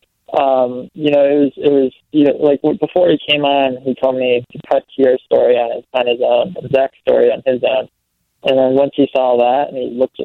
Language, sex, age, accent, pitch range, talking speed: English, male, 20-39, American, 125-140 Hz, 240 wpm